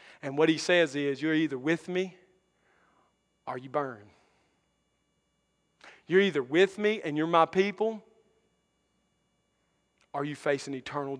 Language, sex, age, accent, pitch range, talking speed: English, male, 40-59, American, 140-175 Hz, 135 wpm